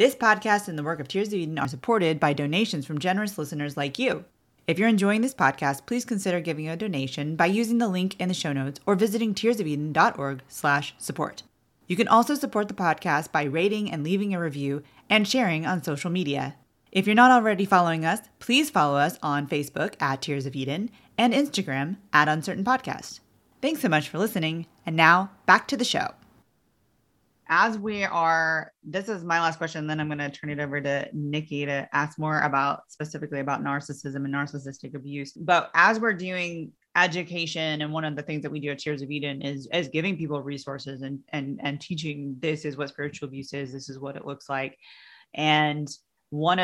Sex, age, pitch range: female, 30-49, 145-190 Hz